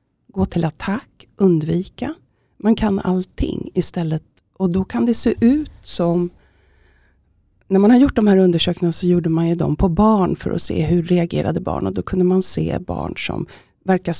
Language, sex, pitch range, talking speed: Swedish, female, 165-195 Hz, 180 wpm